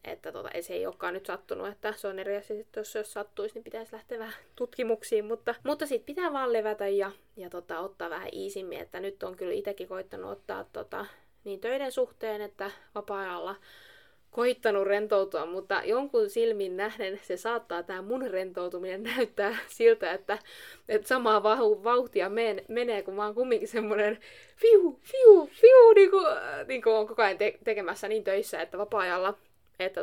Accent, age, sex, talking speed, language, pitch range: native, 20-39, female, 165 wpm, Finnish, 195-250 Hz